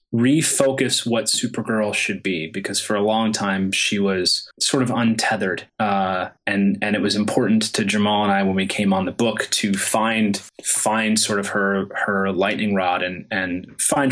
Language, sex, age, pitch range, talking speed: English, male, 20-39, 100-130 Hz, 185 wpm